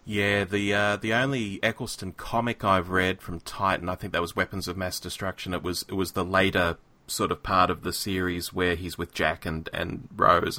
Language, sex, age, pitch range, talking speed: English, male, 30-49, 90-115 Hz, 215 wpm